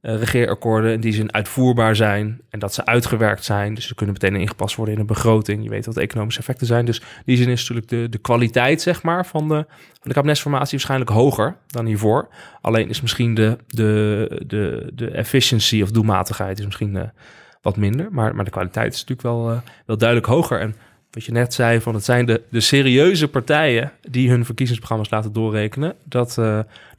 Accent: Dutch